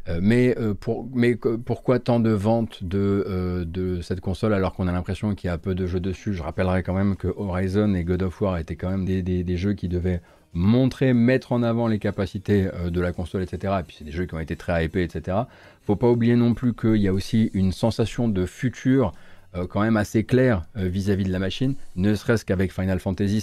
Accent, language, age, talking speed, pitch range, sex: French, French, 30-49, 225 wpm, 90-110 Hz, male